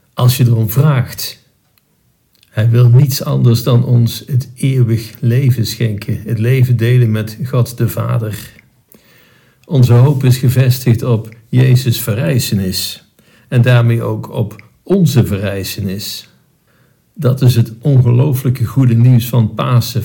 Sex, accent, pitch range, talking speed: male, Dutch, 110-125 Hz, 125 wpm